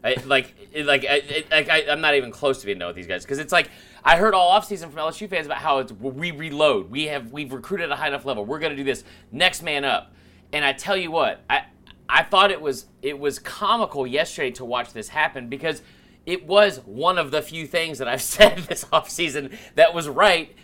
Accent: American